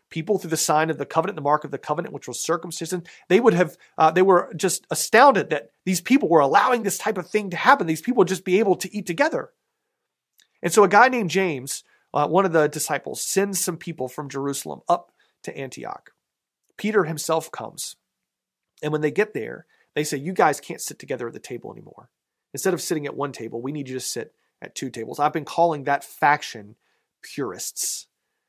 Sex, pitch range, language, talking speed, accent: male, 145-195 Hz, English, 210 wpm, American